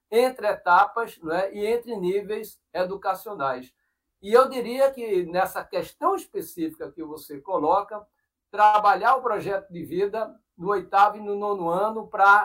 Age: 60-79